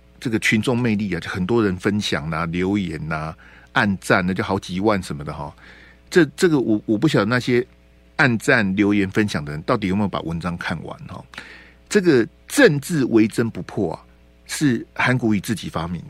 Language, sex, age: Chinese, male, 50-69